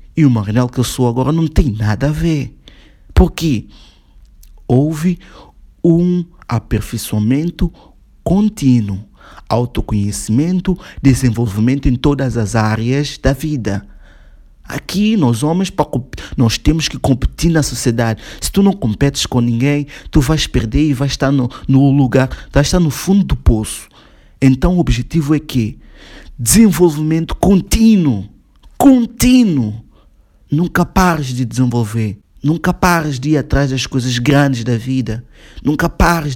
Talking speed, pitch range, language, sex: 130 wpm, 120-155 Hz, Portuguese, male